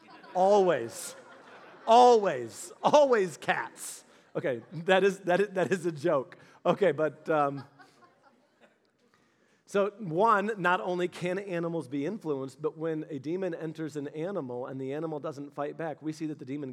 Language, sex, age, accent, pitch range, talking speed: English, male, 40-59, American, 150-190 Hz, 150 wpm